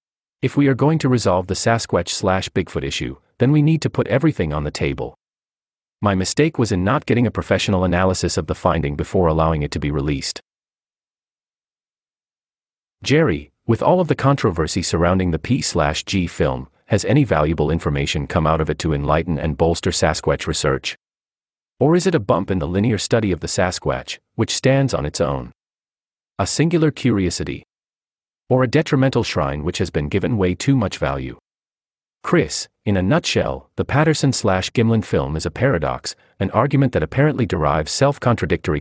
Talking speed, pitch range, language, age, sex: 165 wpm, 80-125 Hz, English, 40-59, male